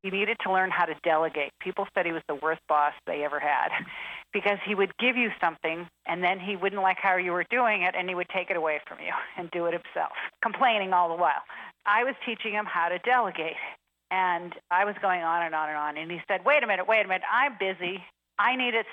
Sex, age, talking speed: female, 50-69, 250 wpm